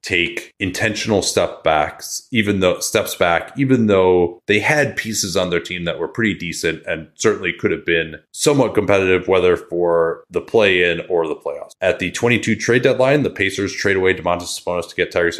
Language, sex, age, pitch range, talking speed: English, male, 30-49, 90-120 Hz, 190 wpm